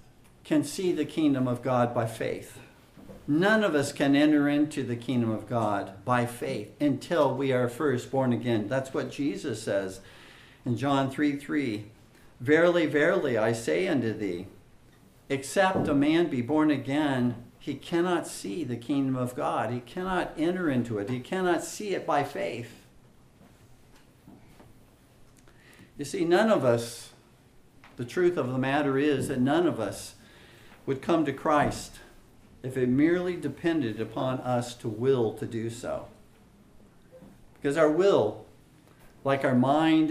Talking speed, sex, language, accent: 150 wpm, male, English, American